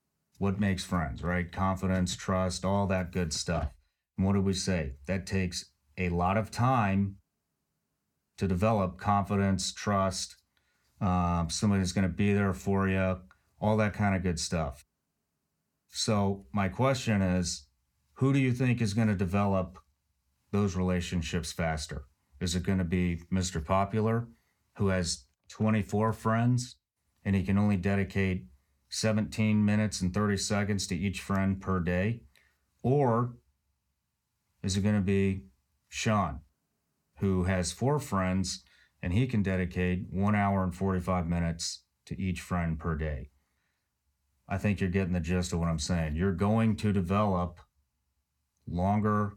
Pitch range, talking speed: 85-100 Hz, 145 wpm